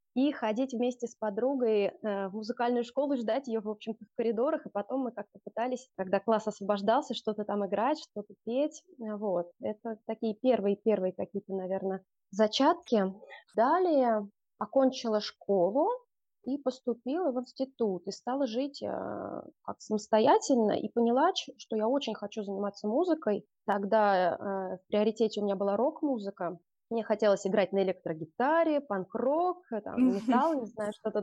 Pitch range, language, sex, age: 200-255 Hz, English, female, 20-39